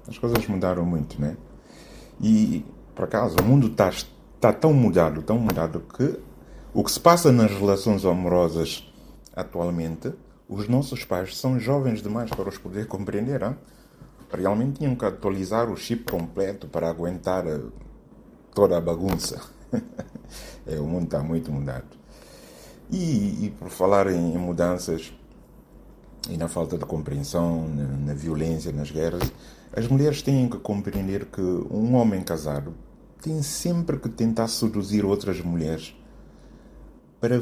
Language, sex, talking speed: Portuguese, male, 140 wpm